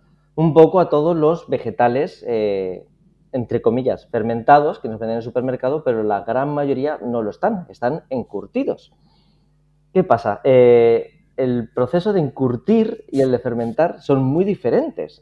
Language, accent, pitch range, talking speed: Spanish, Spanish, 120-155 Hz, 155 wpm